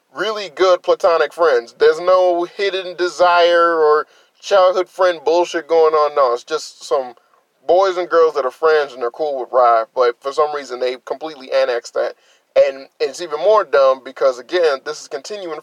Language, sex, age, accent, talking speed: English, male, 20-39, American, 180 wpm